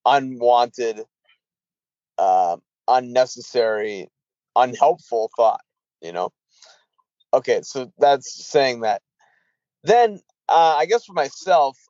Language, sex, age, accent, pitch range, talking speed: English, male, 20-39, American, 120-155 Hz, 90 wpm